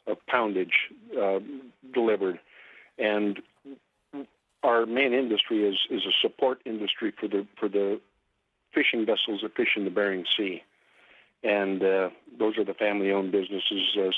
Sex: male